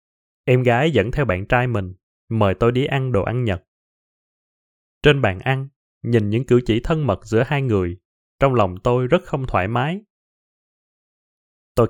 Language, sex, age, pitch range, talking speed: Vietnamese, male, 20-39, 100-140 Hz, 170 wpm